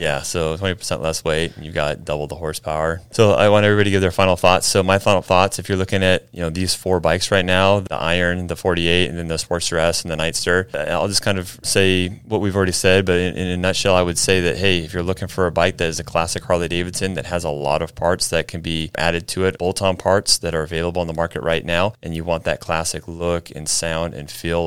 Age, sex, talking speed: 20-39, male, 270 wpm